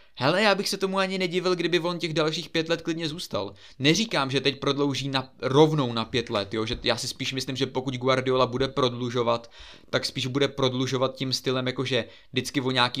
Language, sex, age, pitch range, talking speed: Czech, male, 20-39, 125-145 Hz, 210 wpm